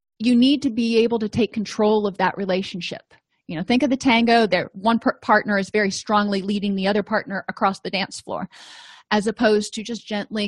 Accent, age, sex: American, 30-49, female